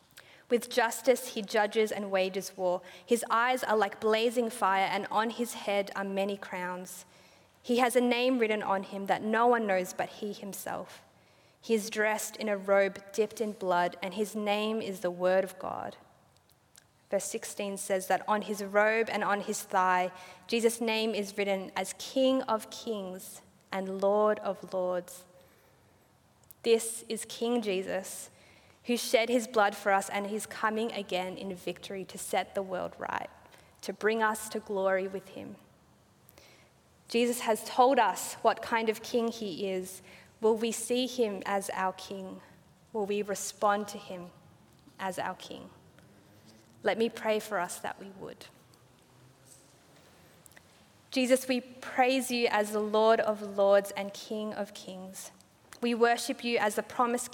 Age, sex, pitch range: 20-39, female, 190-225 Hz